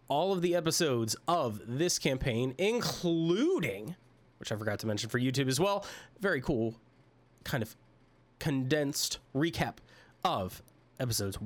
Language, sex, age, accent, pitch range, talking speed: English, male, 20-39, American, 115-170 Hz, 130 wpm